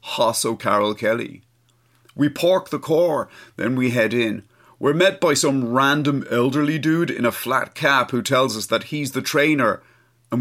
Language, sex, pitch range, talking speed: English, male, 120-180 Hz, 175 wpm